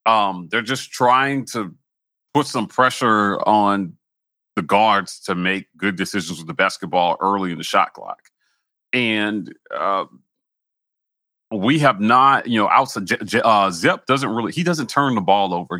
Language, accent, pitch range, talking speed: English, American, 95-120 Hz, 155 wpm